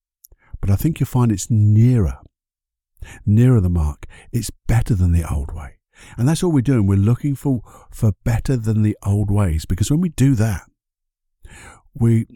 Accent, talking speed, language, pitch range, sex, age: British, 175 wpm, English, 90-125 Hz, male, 50-69